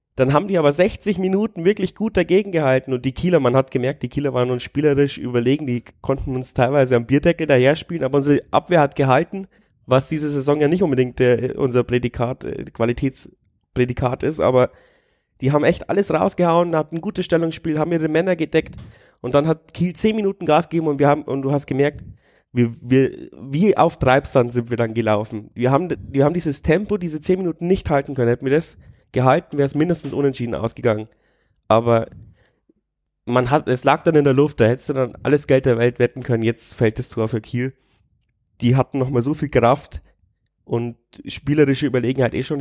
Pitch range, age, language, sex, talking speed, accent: 115-150 Hz, 30-49, German, male, 195 wpm, German